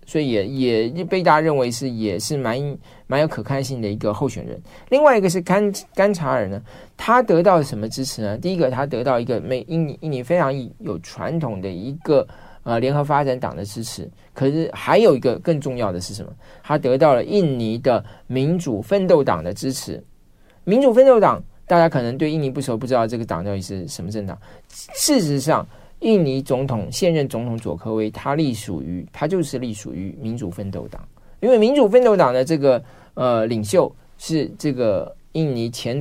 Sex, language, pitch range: male, Chinese, 105-165 Hz